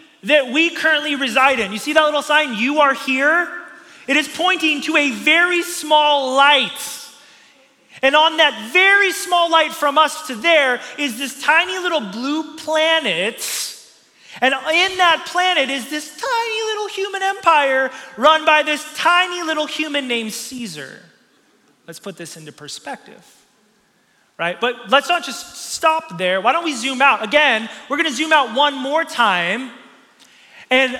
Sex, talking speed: male, 160 wpm